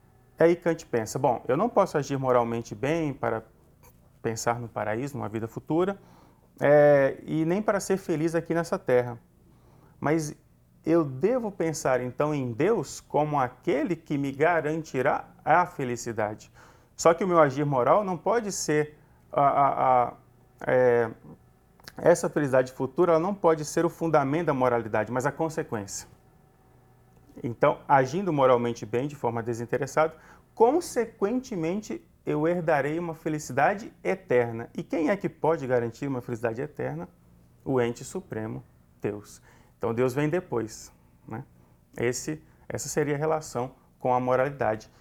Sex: male